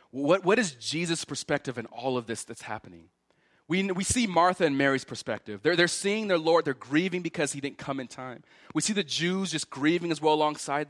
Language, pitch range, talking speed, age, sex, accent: English, 115-180 Hz, 220 wpm, 30-49, male, American